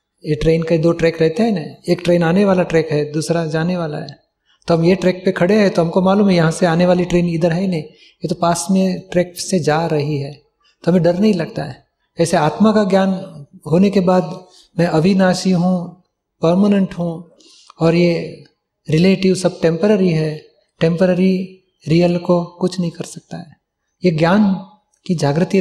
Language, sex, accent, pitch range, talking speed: Gujarati, male, native, 165-190 Hz, 140 wpm